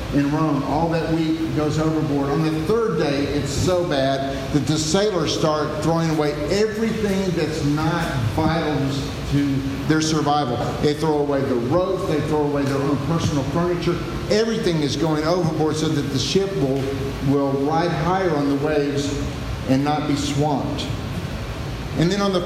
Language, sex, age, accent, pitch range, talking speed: English, male, 50-69, American, 135-165 Hz, 165 wpm